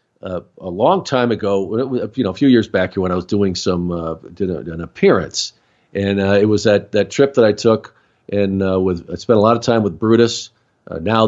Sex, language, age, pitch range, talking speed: male, English, 50-69, 100-120 Hz, 235 wpm